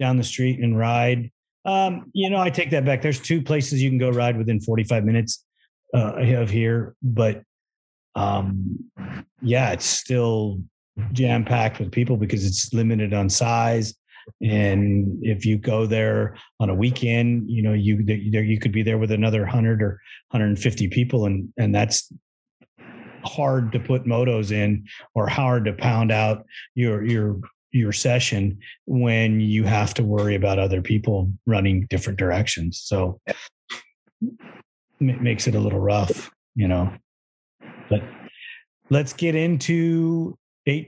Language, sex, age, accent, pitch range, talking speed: English, male, 40-59, American, 105-130 Hz, 150 wpm